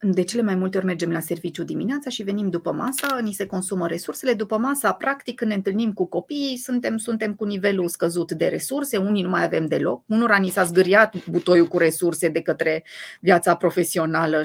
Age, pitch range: 30-49, 175-230 Hz